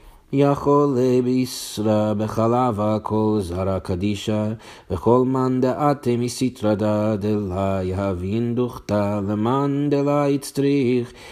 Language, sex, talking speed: English, male, 100 wpm